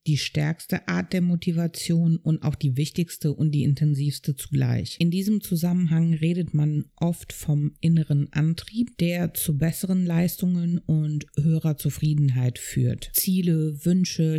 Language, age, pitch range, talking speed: German, 50-69, 140-165 Hz, 135 wpm